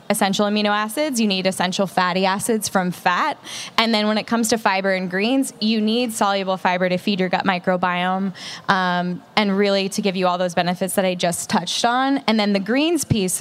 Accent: American